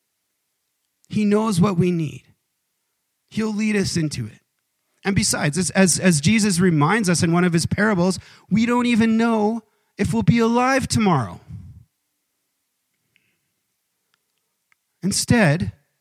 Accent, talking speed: American, 120 wpm